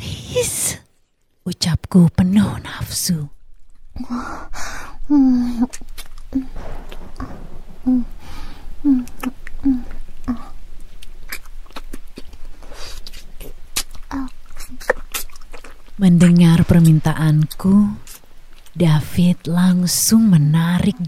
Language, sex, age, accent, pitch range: Indonesian, female, 30-49, native, 145-185 Hz